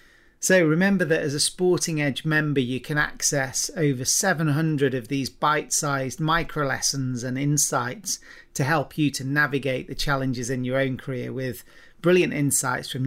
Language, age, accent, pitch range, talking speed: English, 40-59, British, 130-155 Hz, 160 wpm